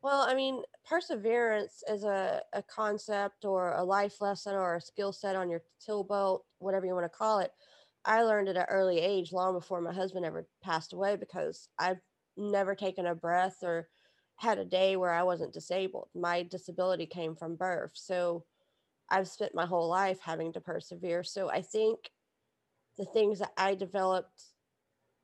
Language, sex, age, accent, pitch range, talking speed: English, female, 20-39, American, 175-205 Hz, 180 wpm